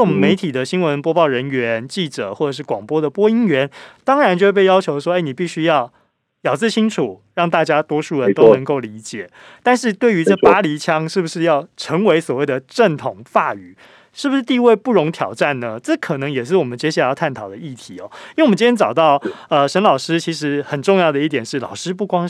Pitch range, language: 135-190 Hz, Chinese